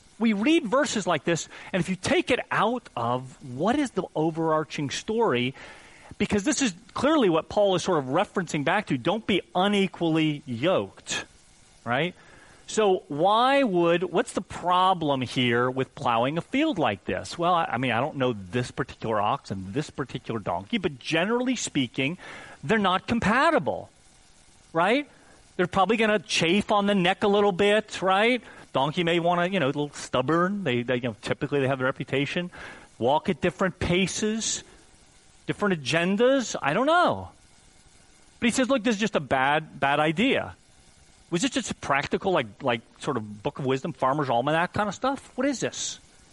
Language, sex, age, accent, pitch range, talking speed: English, male, 40-59, American, 125-205 Hz, 180 wpm